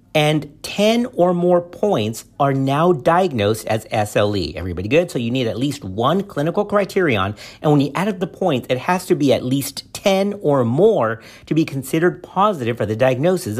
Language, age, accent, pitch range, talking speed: English, 50-69, American, 110-160 Hz, 190 wpm